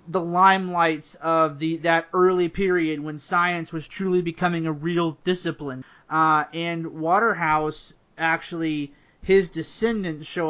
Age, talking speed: 30-49, 125 wpm